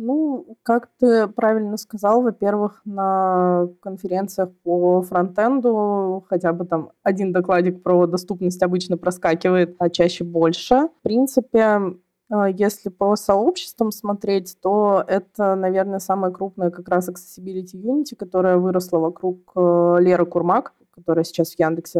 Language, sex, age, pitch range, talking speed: Russian, female, 20-39, 175-200 Hz, 125 wpm